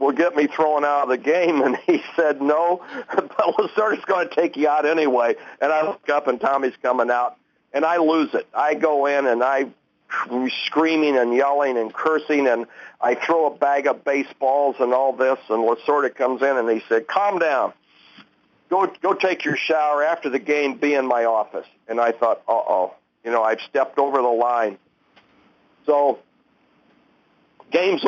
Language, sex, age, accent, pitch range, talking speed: English, male, 50-69, American, 125-155 Hz, 185 wpm